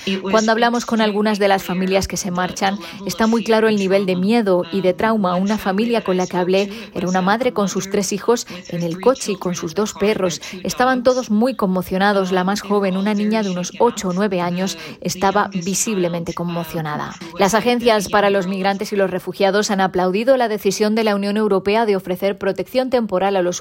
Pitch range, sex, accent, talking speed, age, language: 185-215 Hz, female, Spanish, 205 wpm, 20-39, Spanish